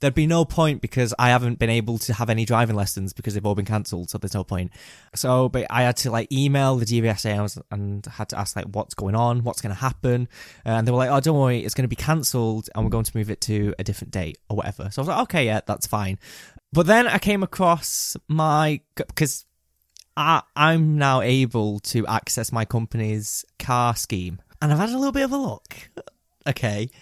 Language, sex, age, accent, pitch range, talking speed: English, male, 20-39, British, 110-140 Hz, 230 wpm